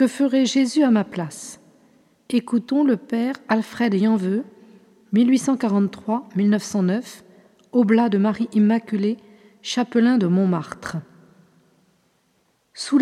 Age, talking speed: 50-69, 90 wpm